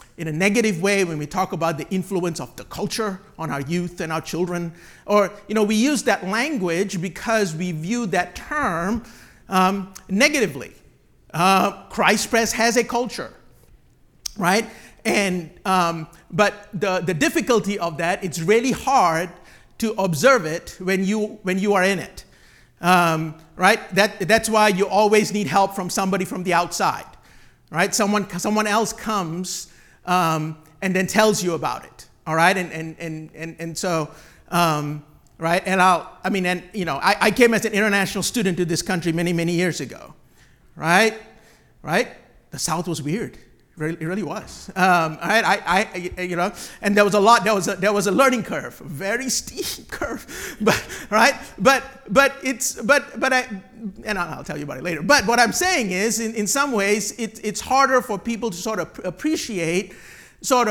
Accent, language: American, English